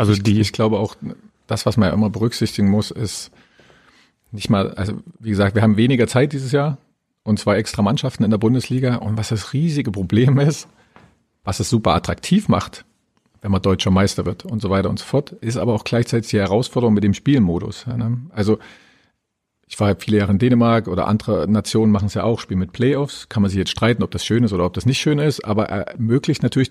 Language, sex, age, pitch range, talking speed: German, male, 40-59, 105-125 Hz, 220 wpm